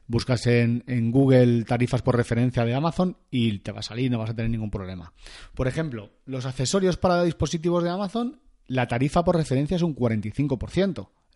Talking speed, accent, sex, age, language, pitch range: 185 wpm, Spanish, male, 30-49, Spanish, 110-145 Hz